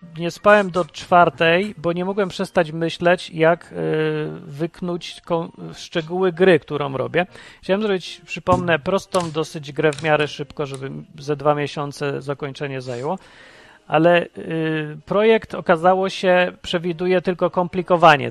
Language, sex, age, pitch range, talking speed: Polish, male, 40-59, 145-180 Hz, 120 wpm